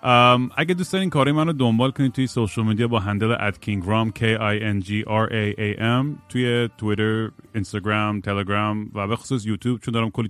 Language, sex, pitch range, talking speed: Persian, male, 105-125 Hz, 200 wpm